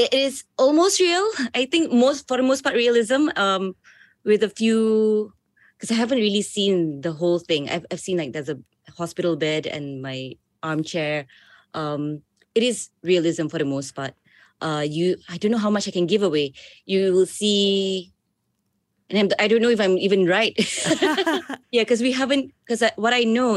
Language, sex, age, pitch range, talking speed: English, female, 20-39, 150-195 Hz, 190 wpm